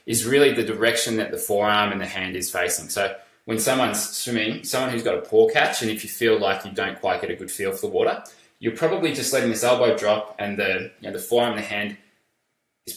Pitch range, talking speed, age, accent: 95-120 Hz, 250 wpm, 20-39, Australian